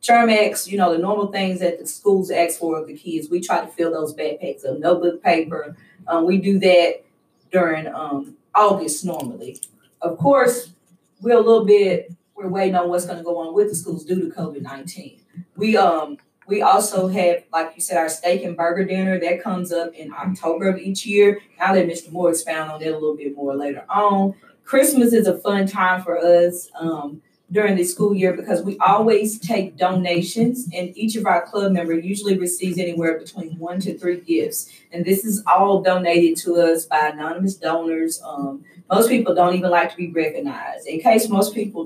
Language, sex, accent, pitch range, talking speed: English, female, American, 170-200 Hz, 200 wpm